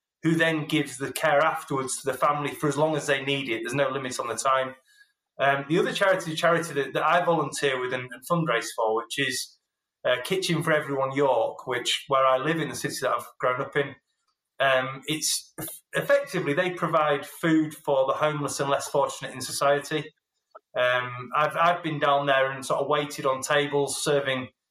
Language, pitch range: English, 140-175 Hz